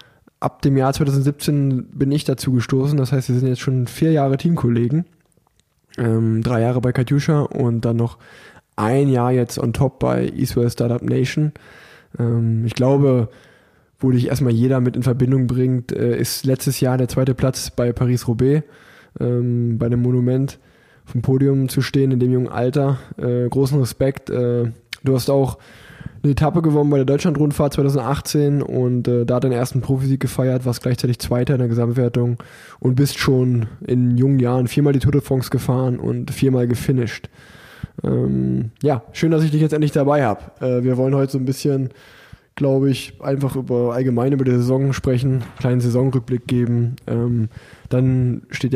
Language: German